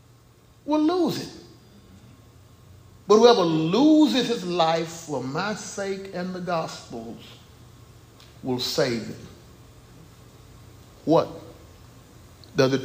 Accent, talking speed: American, 95 wpm